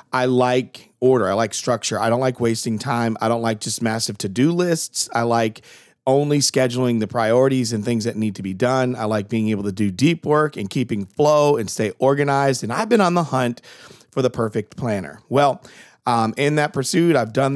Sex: male